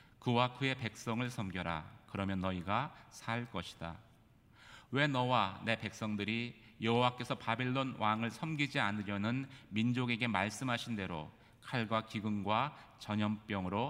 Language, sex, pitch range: Korean, male, 100-125 Hz